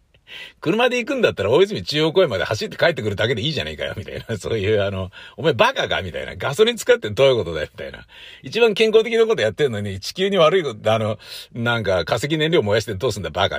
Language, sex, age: Japanese, male, 60-79